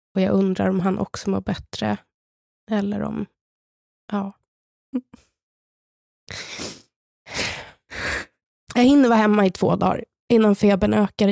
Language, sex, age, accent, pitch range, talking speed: Swedish, female, 20-39, native, 190-225 Hz, 110 wpm